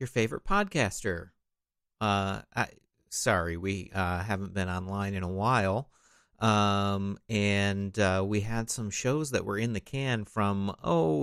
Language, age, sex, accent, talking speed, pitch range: English, 40-59, male, American, 150 wpm, 95-115 Hz